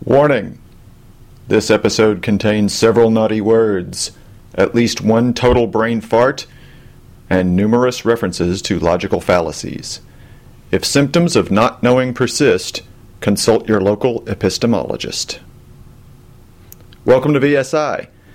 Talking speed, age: 105 wpm, 40-59